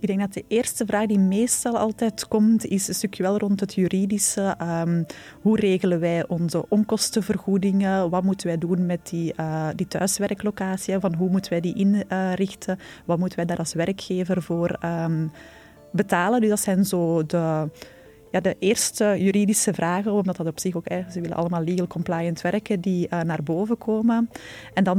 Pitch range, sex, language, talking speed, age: 170-200 Hz, female, Dutch, 185 wpm, 20-39